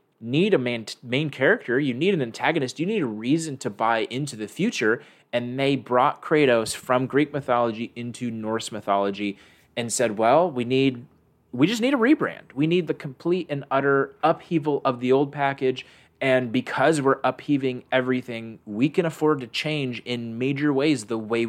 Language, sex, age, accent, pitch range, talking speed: English, male, 20-39, American, 110-135 Hz, 180 wpm